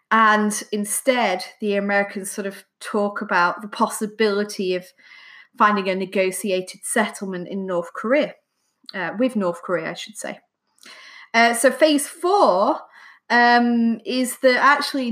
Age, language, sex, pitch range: 30-49, English, female, 200-245 Hz